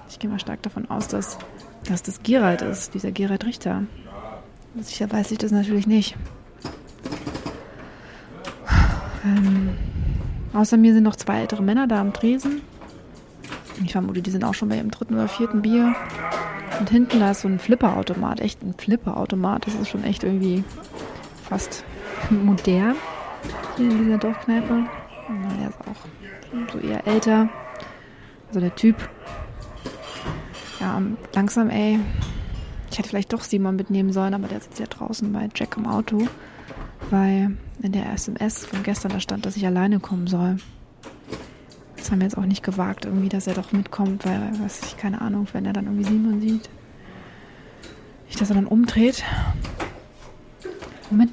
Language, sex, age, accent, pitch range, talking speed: German, female, 30-49, German, 195-225 Hz, 155 wpm